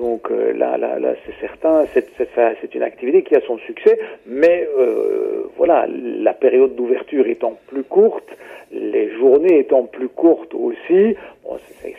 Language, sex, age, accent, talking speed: French, male, 50-69, French, 160 wpm